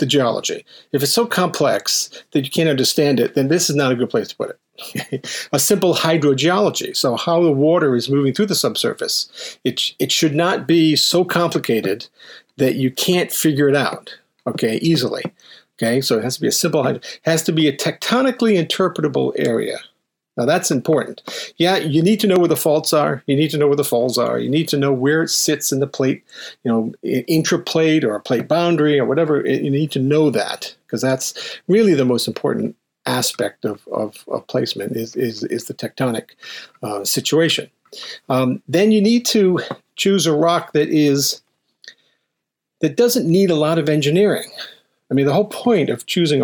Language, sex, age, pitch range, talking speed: English, male, 50-69, 140-180 Hz, 195 wpm